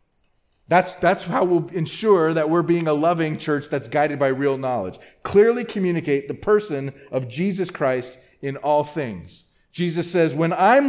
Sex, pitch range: male, 130-180 Hz